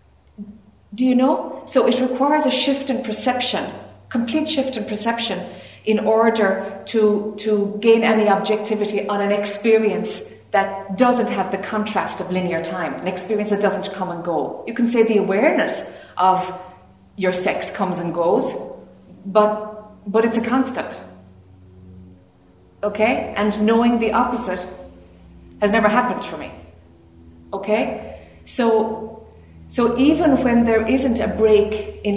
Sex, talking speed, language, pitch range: female, 140 wpm, English, 190-235 Hz